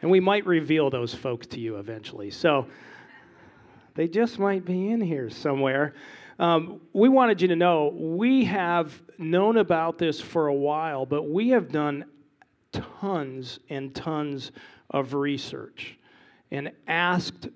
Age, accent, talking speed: 40-59, American, 145 wpm